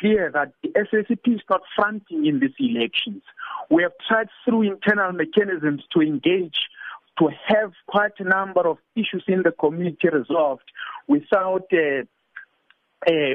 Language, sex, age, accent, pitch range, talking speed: English, male, 50-69, South African, 155-210 Hz, 140 wpm